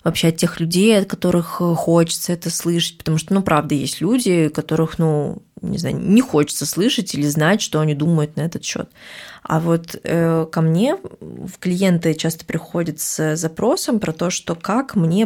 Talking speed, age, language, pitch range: 180 wpm, 20-39, Russian, 155-195 Hz